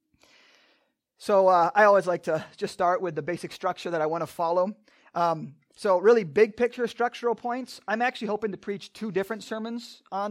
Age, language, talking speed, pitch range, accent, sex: 30-49, English, 185 wpm, 175-210 Hz, American, male